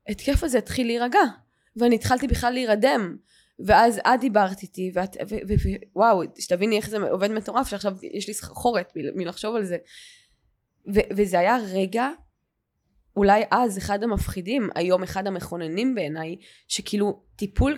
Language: Hebrew